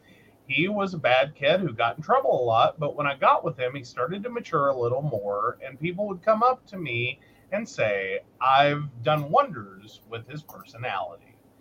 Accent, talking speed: American, 200 wpm